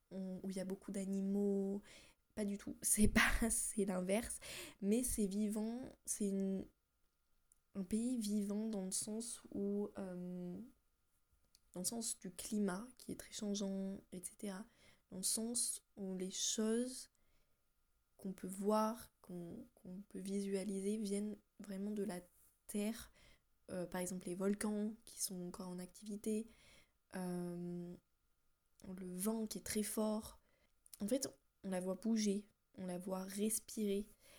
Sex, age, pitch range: female, 20-39, 190-215 Hz